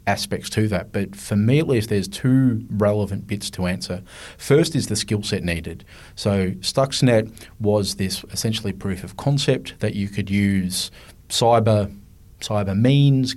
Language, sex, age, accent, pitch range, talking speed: English, male, 30-49, Australian, 95-110 Hz, 155 wpm